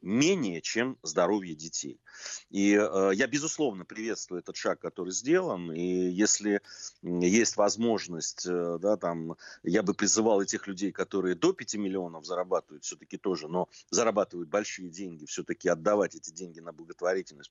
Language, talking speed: Russian, 145 wpm